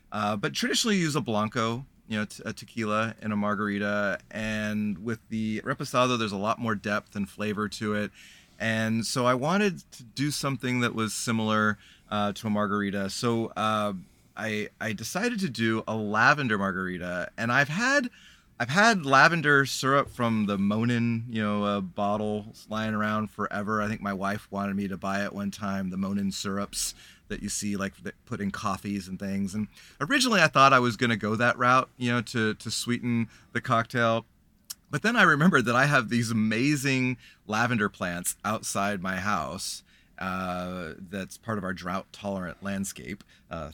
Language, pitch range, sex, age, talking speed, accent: English, 100-125 Hz, male, 30-49, 180 wpm, American